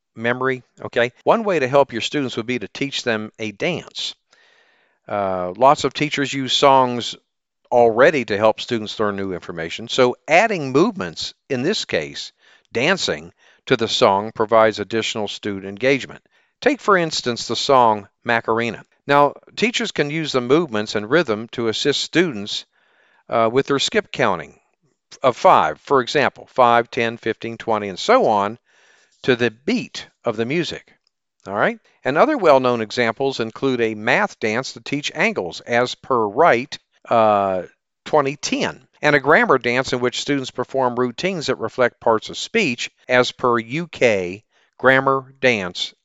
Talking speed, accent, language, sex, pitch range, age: 155 wpm, American, English, male, 110-140 Hz, 50-69